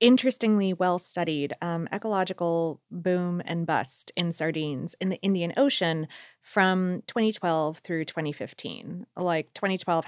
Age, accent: 30-49, American